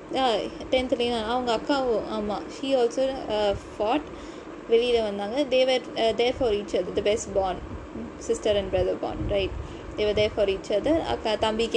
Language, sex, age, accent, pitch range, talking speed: Tamil, female, 20-39, native, 215-275 Hz, 150 wpm